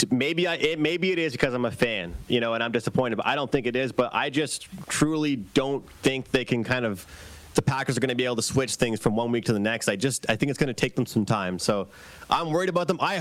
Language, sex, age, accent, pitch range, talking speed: English, male, 30-49, American, 115-150 Hz, 290 wpm